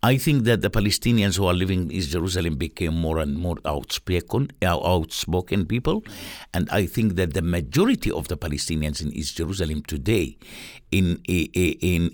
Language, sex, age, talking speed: English, male, 60-79, 175 wpm